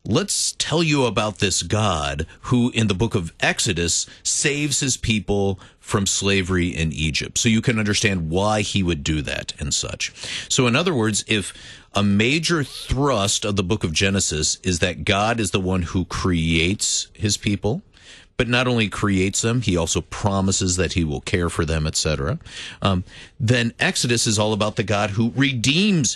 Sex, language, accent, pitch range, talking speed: male, English, American, 90-125 Hz, 180 wpm